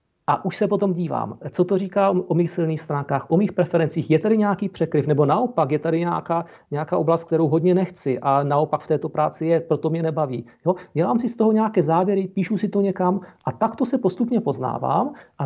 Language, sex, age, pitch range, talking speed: Czech, male, 40-59, 140-175 Hz, 215 wpm